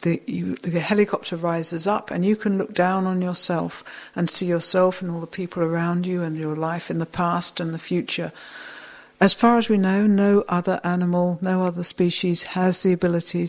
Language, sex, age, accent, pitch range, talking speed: English, female, 60-79, British, 170-190 Hz, 195 wpm